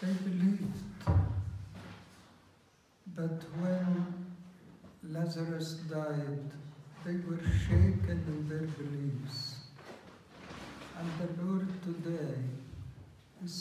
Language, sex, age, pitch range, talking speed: English, male, 60-79, 135-175 Hz, 75 wpm